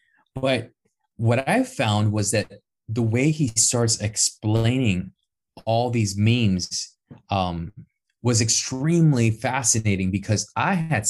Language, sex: English, male